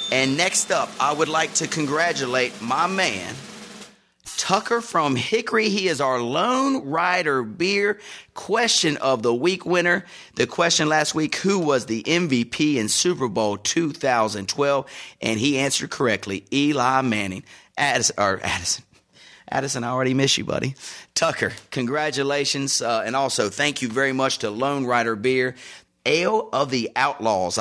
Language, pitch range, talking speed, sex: English, 115-155 Hz, 150 wpm, male